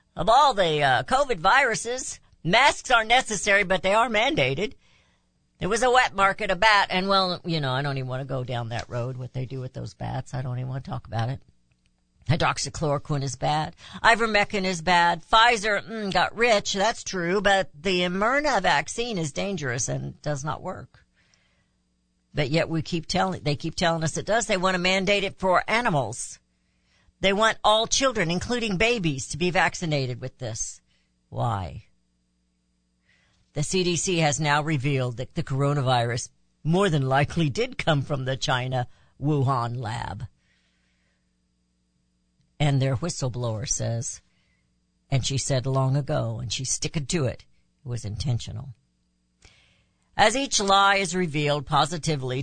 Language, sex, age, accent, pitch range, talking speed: English, female, 60-79, American, 120-185 Hz, 160 wpm